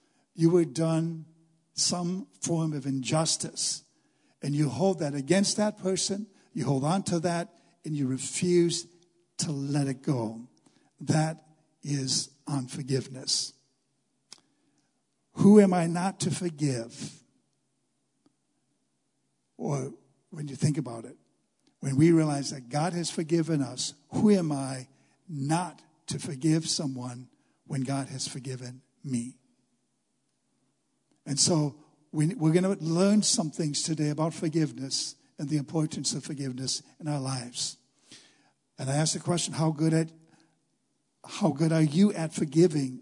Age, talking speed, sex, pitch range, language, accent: 60-79, 135 wpm, male, 140-170 Hz, English, American